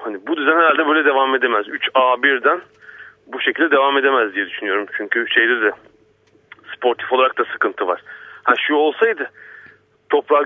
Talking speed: 150 wpm